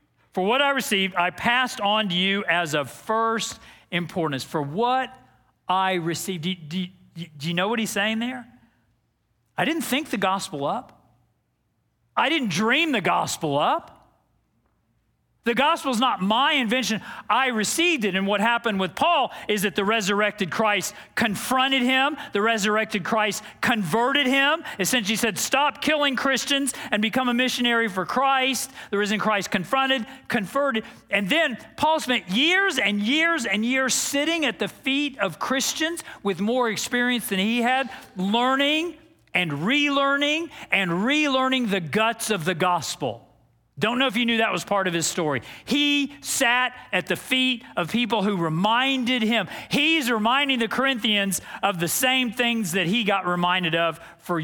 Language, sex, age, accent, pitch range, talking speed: English, male, 40-59, American, 185-260 Hz, 160 wpm